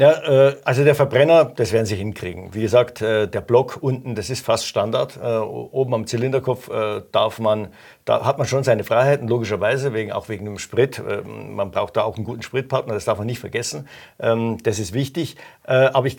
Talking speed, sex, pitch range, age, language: 190 wpm, male, 110-135 Hz, 50-69, German